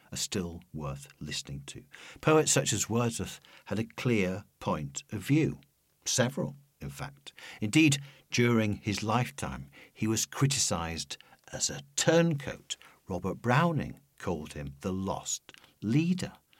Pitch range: 90-135 Hz